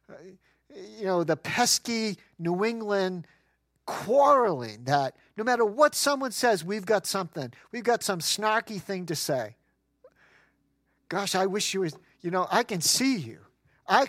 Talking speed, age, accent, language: 150 wpm, 50-69, American, English